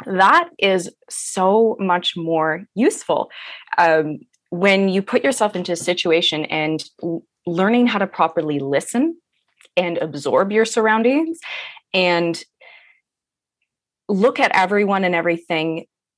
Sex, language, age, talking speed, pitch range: female, English, 20-39, 110 wpm, 160-205 Hz